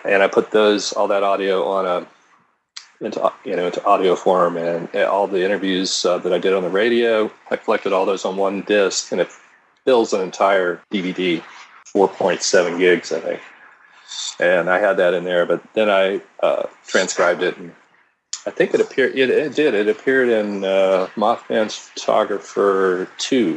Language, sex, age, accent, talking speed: English, male, 40-59, American, 180 wpm